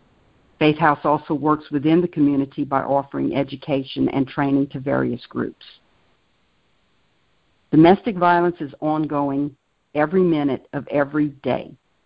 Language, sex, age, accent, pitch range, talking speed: English, female, 50-69, American, 140-160 Hz, 120 wpm